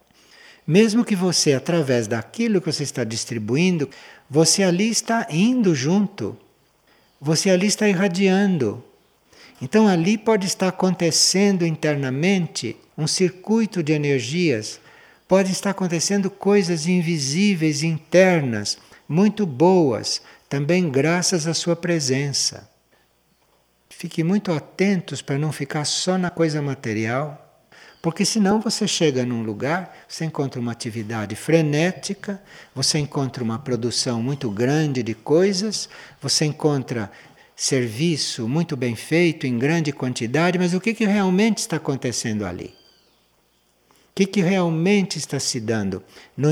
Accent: Brazilian